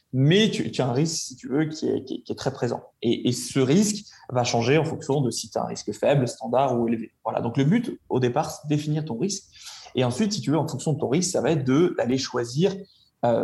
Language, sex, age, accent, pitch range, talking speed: French, male, 20-39, French, 125-155 Hz, 280 wpm